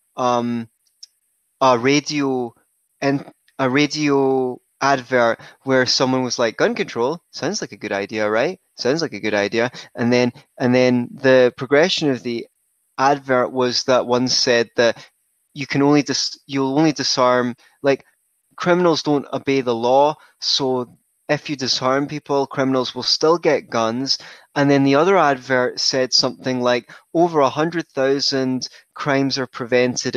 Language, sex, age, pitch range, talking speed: English, male, 20-39, 125-160 Hz, 155 wpm